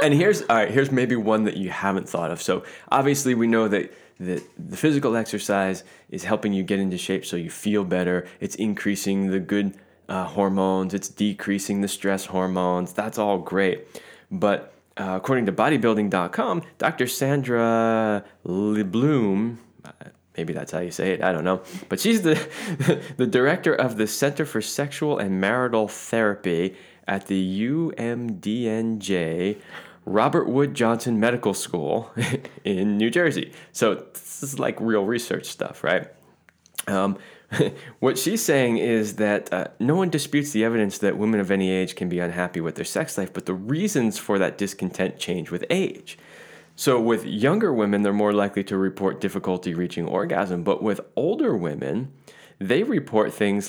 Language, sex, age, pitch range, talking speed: English, male, 20-39, 95-115 Hz, 165 wpm